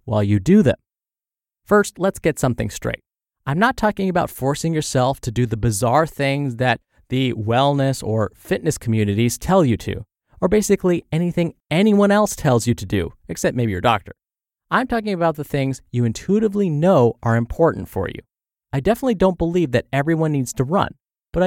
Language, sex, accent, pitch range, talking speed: English, male, American, 120-180 Hz, 180 wpm